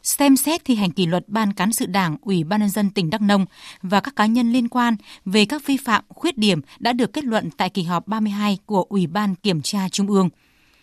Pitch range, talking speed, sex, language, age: 195-245 Hz, 245 wpm, female, Vietnamese, 20-39